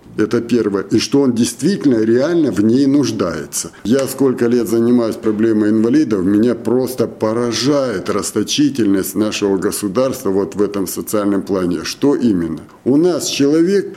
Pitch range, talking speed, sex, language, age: 110-150 Hz, 135 wpm, male, Russian, 50-69